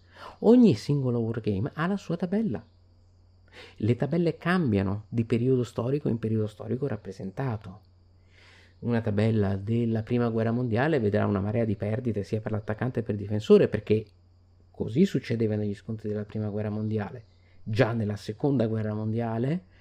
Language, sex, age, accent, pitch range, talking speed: Italian, male, 30-49, native, 90-120 Hz, 150 wpm